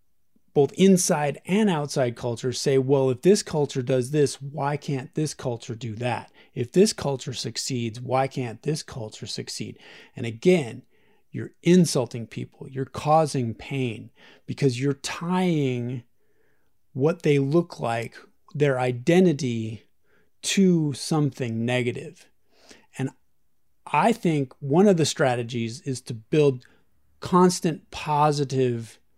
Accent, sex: American, male